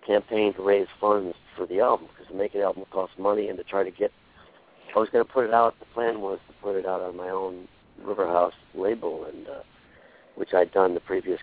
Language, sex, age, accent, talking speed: English, male, 60-79, American, 235 wpm